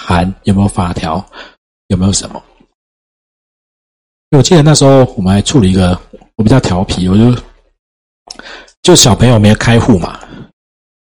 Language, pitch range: Chinese, 95-120 Hz